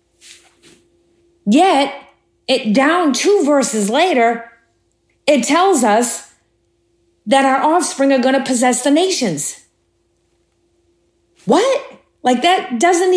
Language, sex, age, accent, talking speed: English, female, 40-59, American, 95 wpm